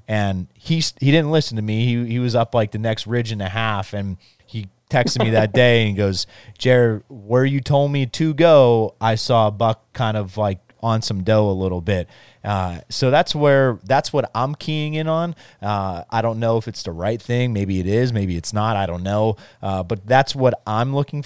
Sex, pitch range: male, 100-120 Hz